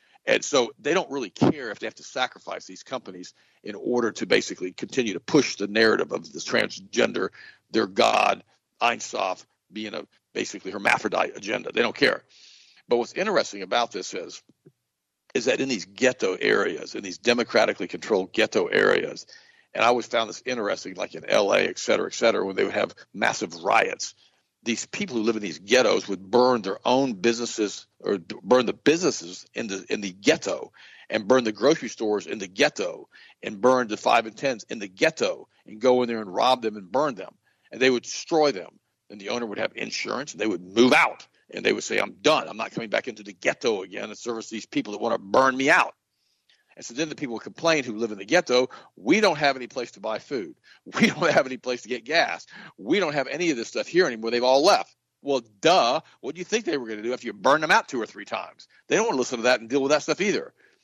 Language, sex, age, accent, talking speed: English, male, 50-69, American, 230 wpm